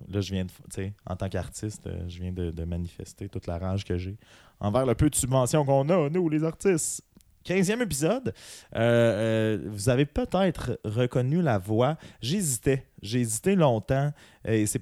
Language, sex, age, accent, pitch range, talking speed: French, male, 20-39, Canadian, 100-125 Hz, 170 wpm